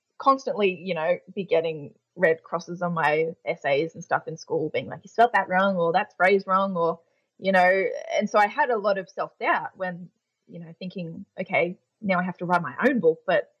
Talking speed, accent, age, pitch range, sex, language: 215 wpm, Australian, 20-39, 175-215 Hz, female, English